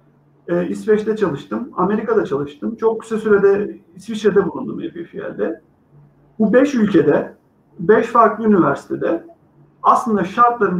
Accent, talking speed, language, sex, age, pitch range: native, 105 wpm, Turkish, male, 50-69, 185-235 Hz